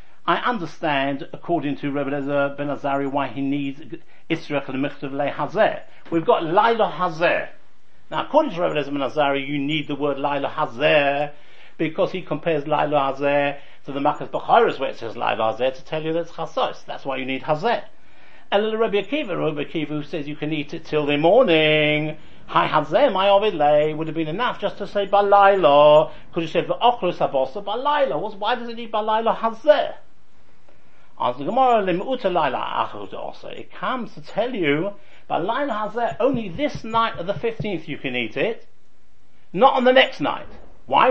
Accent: British